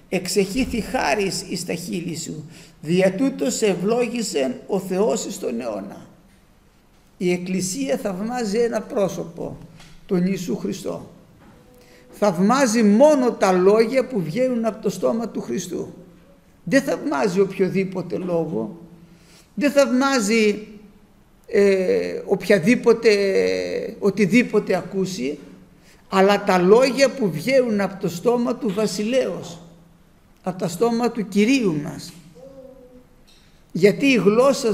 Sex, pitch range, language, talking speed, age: male, 190-245 Hz, Greek, 105 wpm, 60-79